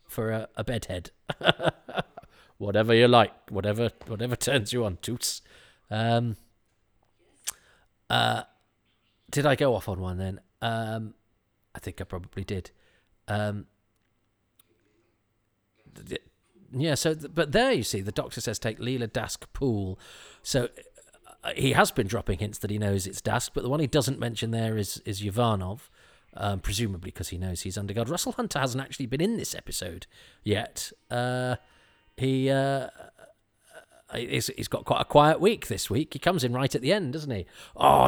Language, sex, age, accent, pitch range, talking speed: English, male, 40-59, British, 105-135 Hz, 165 wpm